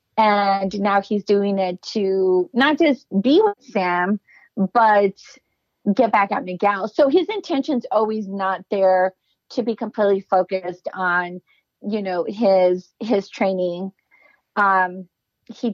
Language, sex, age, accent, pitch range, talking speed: English, female, 30-49, American, 190-240 Hz, 130 wpm